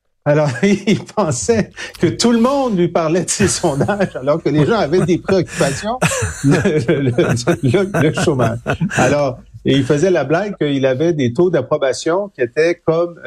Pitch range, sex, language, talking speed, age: 120-170 Hz, male, French, 185 wpm, 50-69